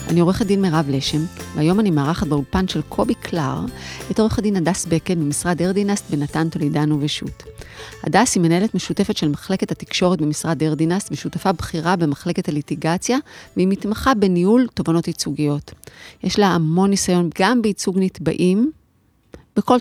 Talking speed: 145 wpm